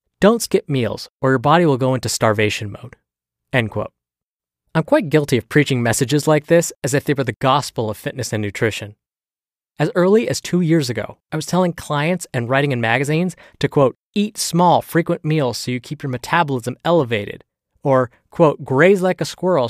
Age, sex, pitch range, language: 20-39, male, 115-165 Hz, English